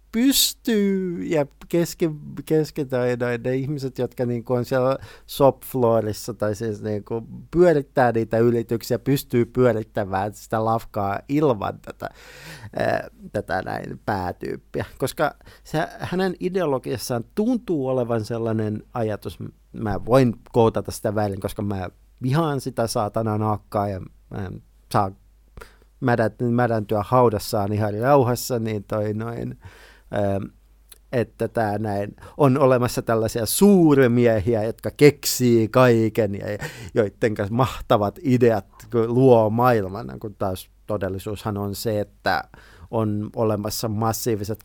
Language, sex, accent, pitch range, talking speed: Finnish, male, native, 105-125 Hz, 105 wpm